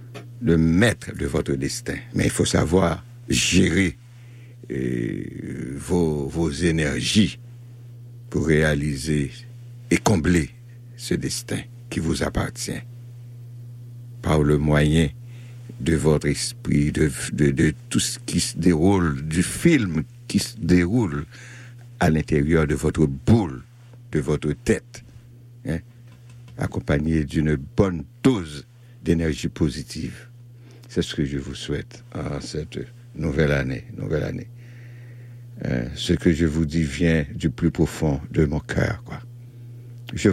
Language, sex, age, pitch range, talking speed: French, male, 60-79, 80-120 Hz, 120 wpm